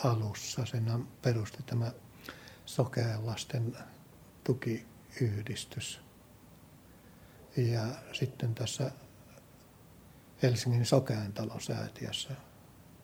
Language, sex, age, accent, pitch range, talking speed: Finnish, male, 60-79, native, 115-125 Hz, 60 wpm